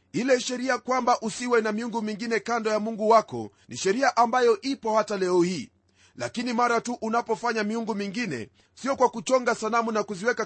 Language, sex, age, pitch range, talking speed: Swahili, male, 40-59, 200-235 Hz, 170 wpm